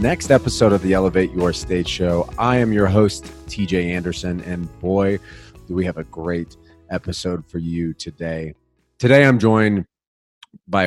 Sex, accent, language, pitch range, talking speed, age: male, American, English, 85-110 Hz, 160 wpm, 30-49